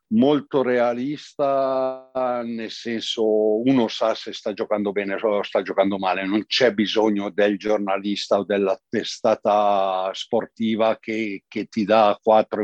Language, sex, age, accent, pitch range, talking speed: Italian, male, 60-79, native, 105-130 Hz, 135 wpm